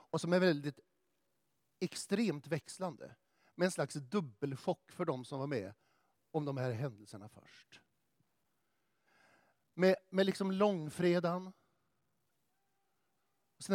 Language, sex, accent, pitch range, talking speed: Swedish, male, native, 150-205 Hz, 110 wpm